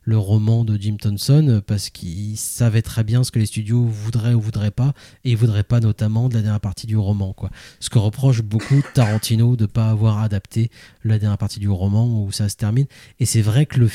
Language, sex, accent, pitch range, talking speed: French, male, French, 105-125 Hz, 230 wpm